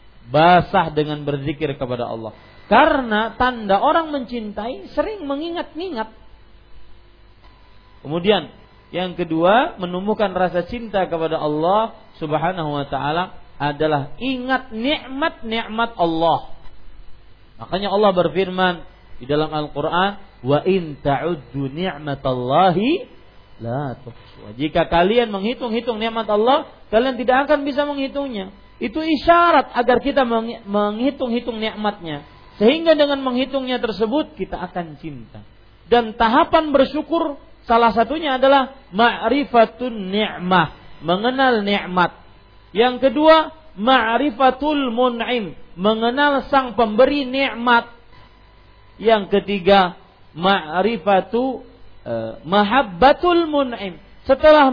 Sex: male